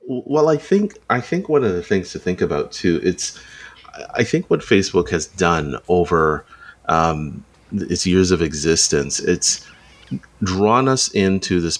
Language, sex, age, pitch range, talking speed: English, male, 30-49, 80-95 Hz, 160 wpm